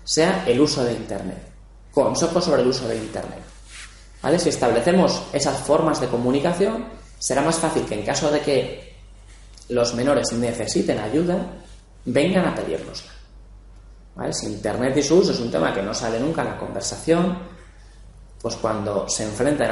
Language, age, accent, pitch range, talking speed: Spanish, 20-39, Spanish, 115-160 Hz, 160 wpm